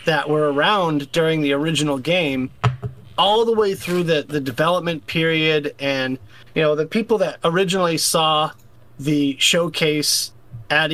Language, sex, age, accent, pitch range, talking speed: English, male, 30-49, American, 140-165 Hz, 145 wpm